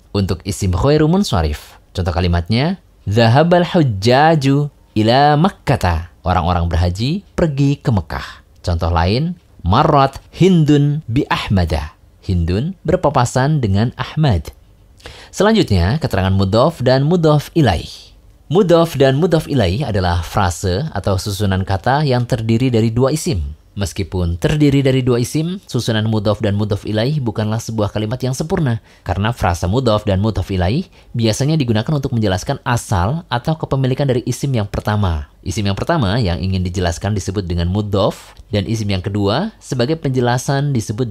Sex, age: male, 20-39